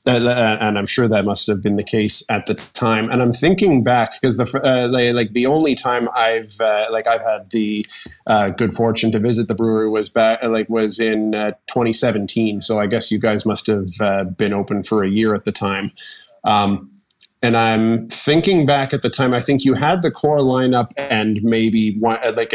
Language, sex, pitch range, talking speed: English, male, 105-120 Hz, 215 wpm